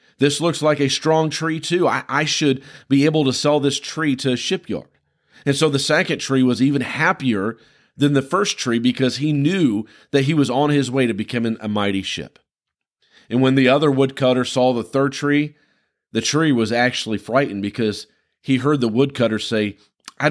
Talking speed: 195 wpm